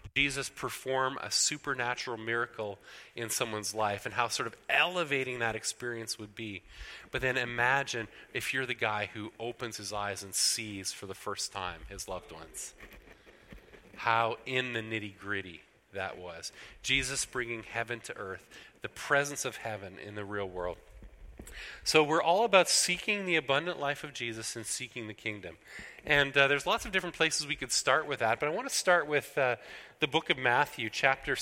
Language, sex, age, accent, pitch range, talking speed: English, male, 30-49, American, 105-140 Hz, 180 wpm